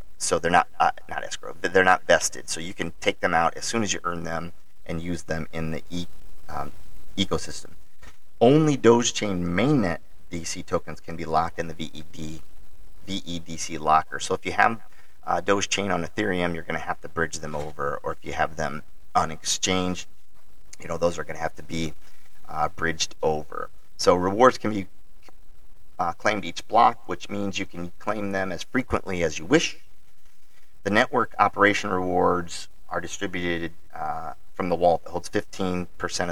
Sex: male